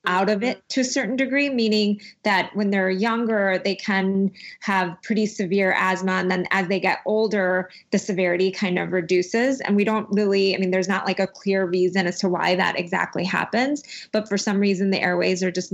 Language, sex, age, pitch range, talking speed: English, female, 20-39, 185-215 Hz, 210 wpm